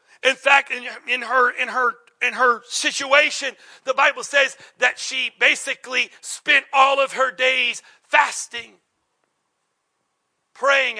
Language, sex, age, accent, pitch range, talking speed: English, male, 40-59, American, 240-290 Hz, 125 wpm